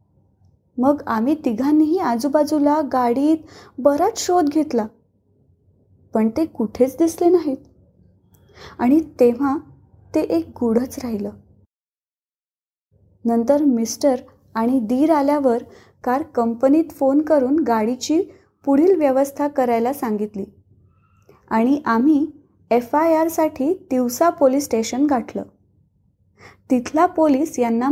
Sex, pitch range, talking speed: female, 225-295 Hz, 95 wpm